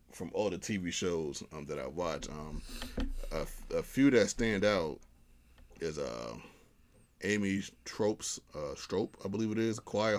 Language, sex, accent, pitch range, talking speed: English, male, American, 75-100 Hz, 160 wpm